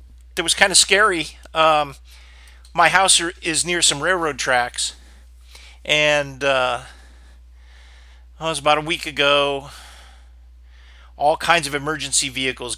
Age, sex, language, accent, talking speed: 40-59, male, English, American, 120 wpm